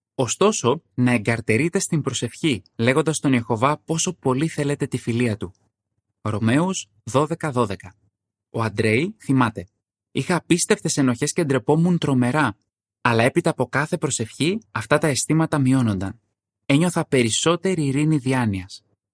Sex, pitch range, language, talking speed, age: male, 110-155 Hz, Greek, 120 wpm, 20-39